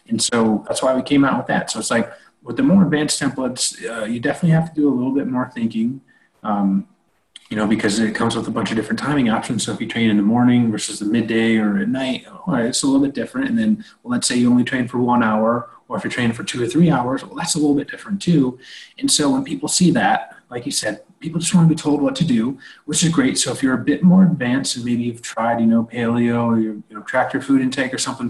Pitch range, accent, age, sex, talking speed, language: 115-160 Hz, American, 30-49, male, 275 wpm, English